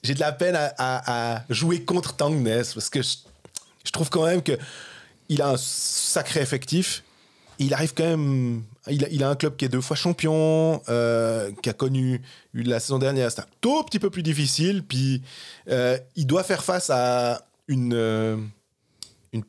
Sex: male